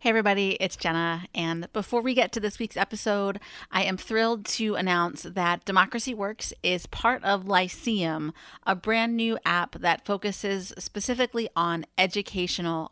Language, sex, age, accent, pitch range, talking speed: English, female, 30-49, American, 175-225 Hz, 155 wpm